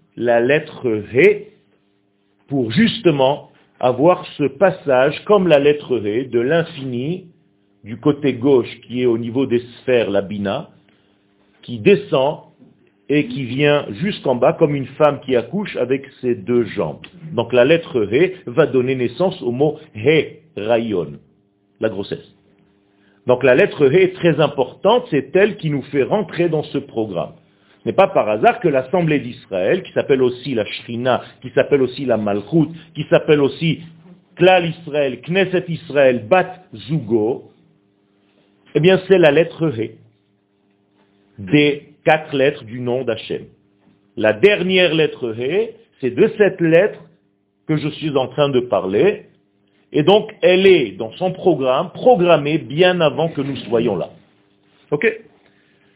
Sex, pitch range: male, 110-170 Hz